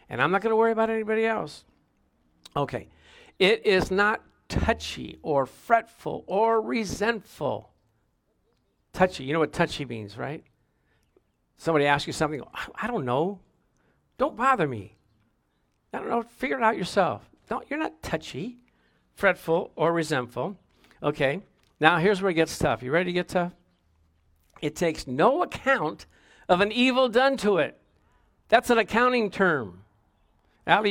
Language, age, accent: English, 50-69, American